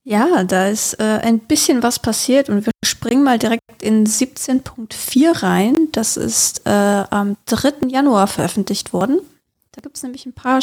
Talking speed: 170 wpm